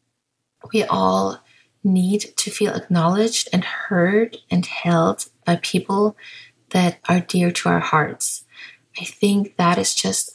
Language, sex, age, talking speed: English, female, 30-49, 135 wpm